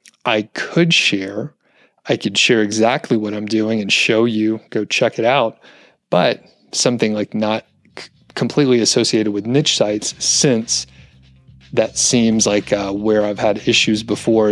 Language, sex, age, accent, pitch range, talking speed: English, male, 30-49, American, 105-130 Hz, 150 wpm